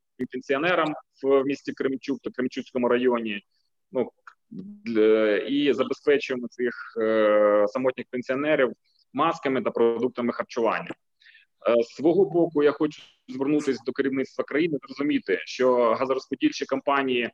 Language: Ukrainian